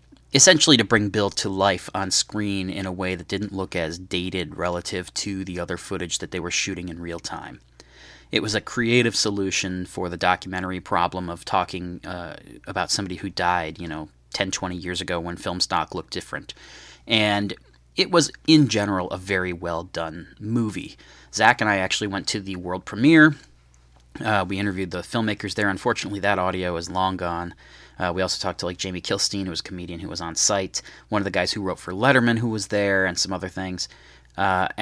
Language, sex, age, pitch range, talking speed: English, male, 30-49, 85-100 Hz, 205 wpm